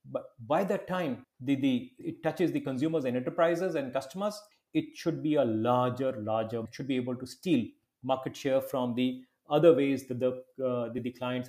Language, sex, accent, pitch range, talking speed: English, male, Indian, 135-200 Hz, 205 wpm